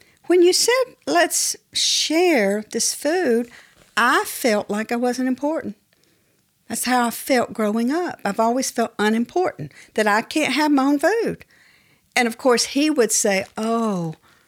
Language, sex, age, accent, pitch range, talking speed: English, female, 60-79, American, 195-265 Hz, 155 wpm